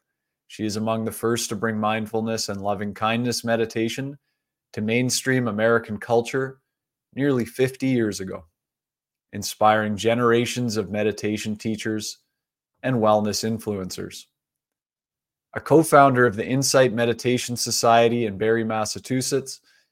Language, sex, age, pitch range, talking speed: English, male, 20-39, 110-130 Hz, 110 wpm